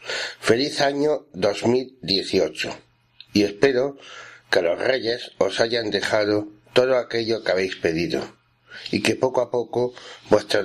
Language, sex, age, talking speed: Spanish, male, 60-79, 125 wpm